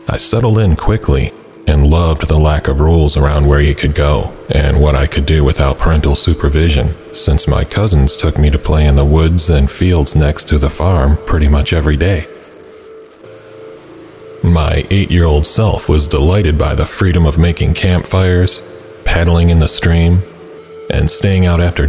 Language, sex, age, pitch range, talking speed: English, male, 30-49, 75-90 Hz, 175 wpm